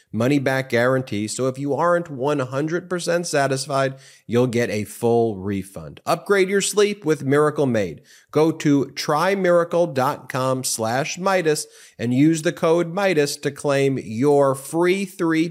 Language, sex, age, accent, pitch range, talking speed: English, male, 30-49, American, 115-160 Hz, 130 wpm